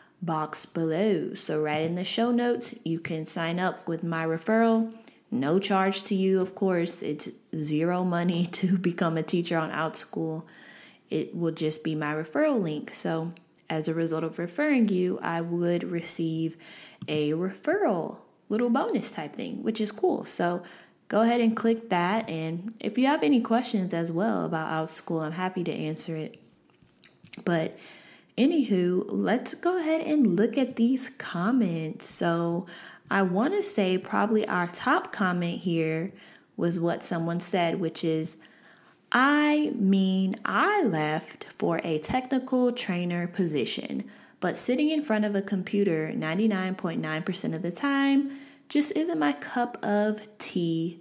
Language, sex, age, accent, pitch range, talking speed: English, female, 20-39, American, 165-235 Hz, 150 wpm